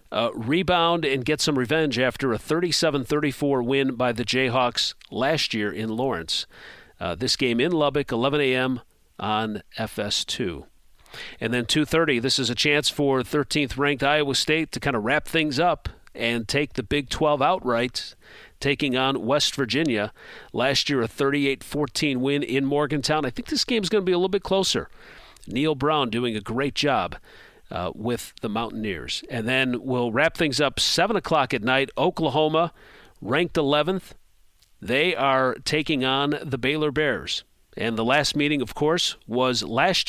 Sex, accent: male, American